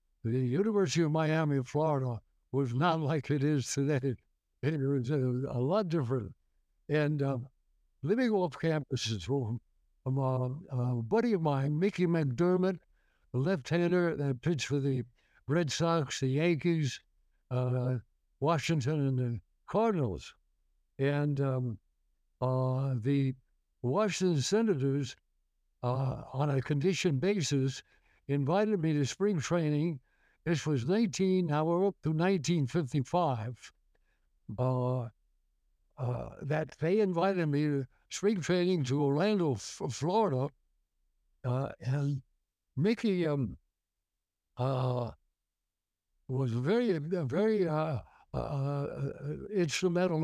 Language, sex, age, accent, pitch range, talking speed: English, male, 60-79, American, 125-165 Hz, 110 wpm